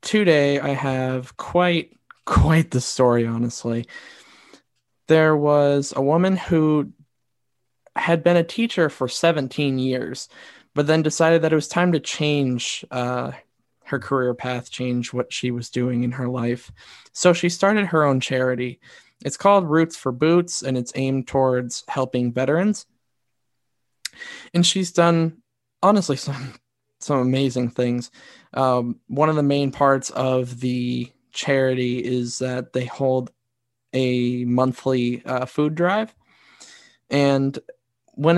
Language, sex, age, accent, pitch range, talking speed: English, male, 20-39, American, 125-150 Hz, 135 wpm